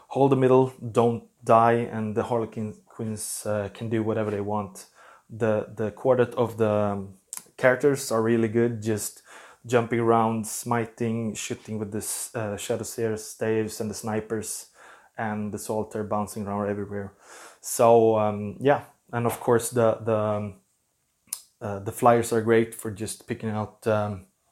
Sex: male